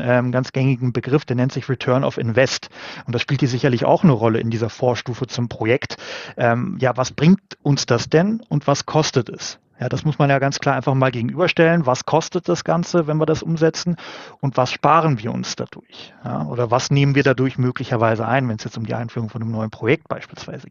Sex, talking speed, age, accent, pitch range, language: male, 215 wpm, 30-49, German, 125-150 Hz, German